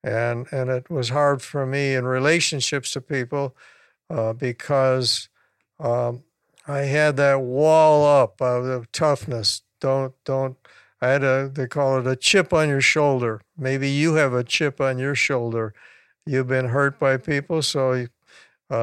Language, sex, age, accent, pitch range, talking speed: English, male, 60-79, American, 125-145 Hz, 155 wpm